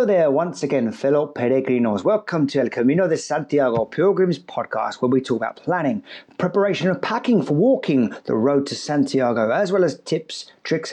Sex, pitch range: male, 130-195 Hz